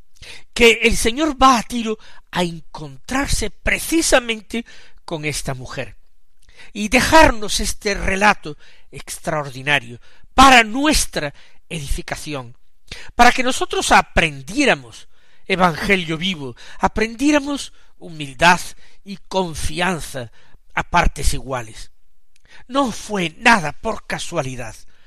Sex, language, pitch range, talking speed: male, Spanish, 145-220 Hz, 90 wpm